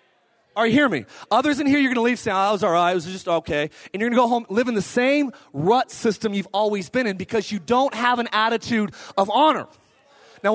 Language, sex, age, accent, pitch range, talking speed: English, male, 30-49, American, 195-250 Hz, 260 wpm